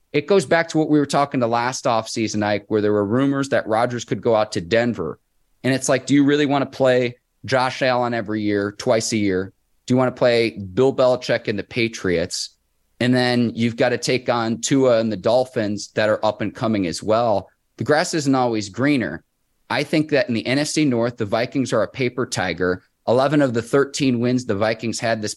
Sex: male